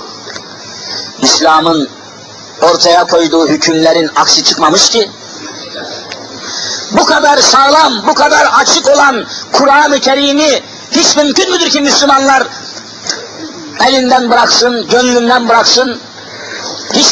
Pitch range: 255-290 Hz